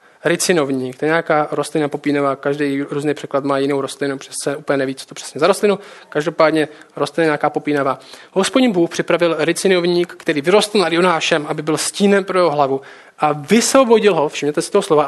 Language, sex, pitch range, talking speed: Czech, male, 150-210 Hz, 185 wpm